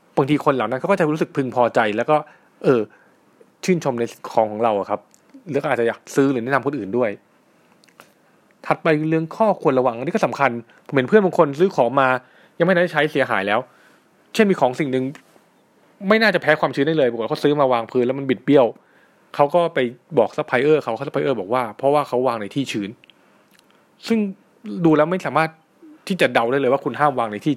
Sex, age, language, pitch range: male, 20-39, Thai, 130-170 Hz